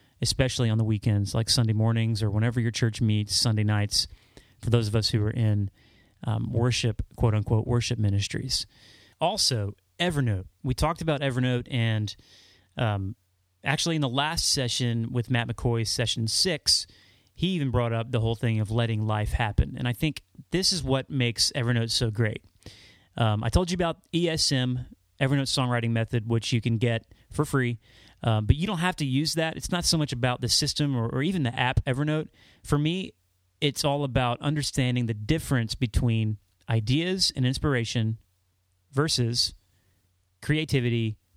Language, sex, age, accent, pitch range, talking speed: English, male, 30-49, American, 105-135 Hz, 165 wpm